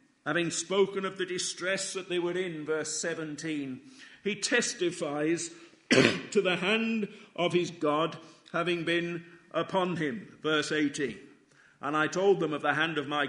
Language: English